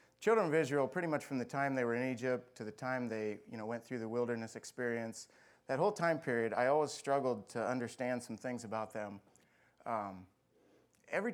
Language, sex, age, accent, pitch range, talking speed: English, male, 30-49, American, 110-145 Hz, 200 wpm